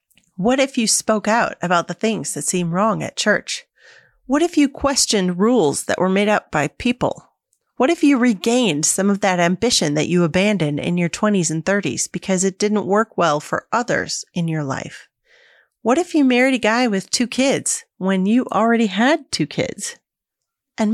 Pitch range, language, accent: 175-235 Hz, English, American